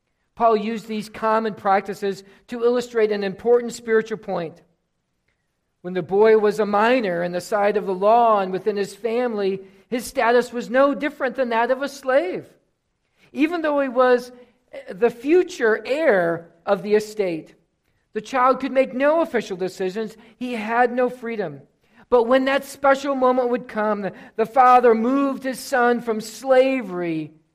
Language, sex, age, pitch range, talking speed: English, male, 50-69, 195-250 Hz, 155 wpm